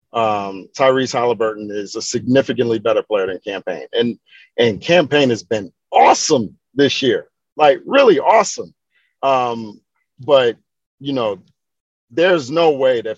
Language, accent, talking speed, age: English, American, 130 wpm, 40-59